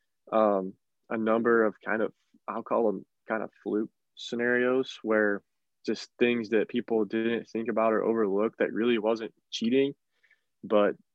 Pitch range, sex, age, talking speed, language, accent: 105-120 Hz, male, 20-39, 150 wpm, English, American